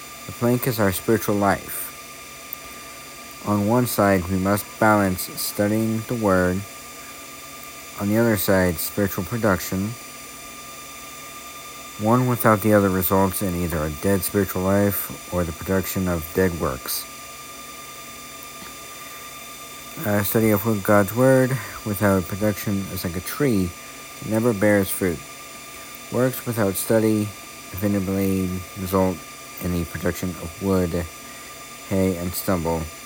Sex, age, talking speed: male, 60-79, 120 wpm